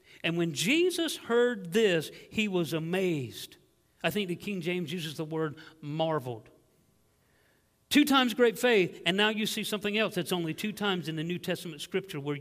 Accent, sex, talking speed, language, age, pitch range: American, male, 180 wpm, English, 50-69, 170-225 Hz